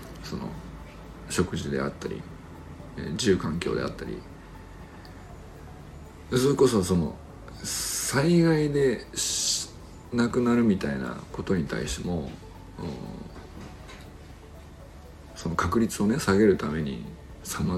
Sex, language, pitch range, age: male, Japanese, 80-120 Hz, 50-69